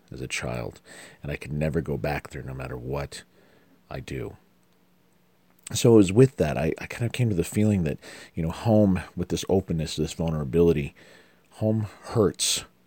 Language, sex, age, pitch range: English, male, 40-59, 75-90 Hz